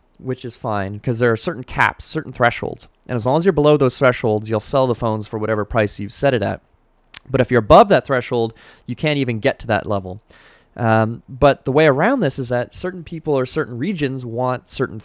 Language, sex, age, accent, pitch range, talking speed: English, male, 20-39, American, 105-135 Hz, 225 wpm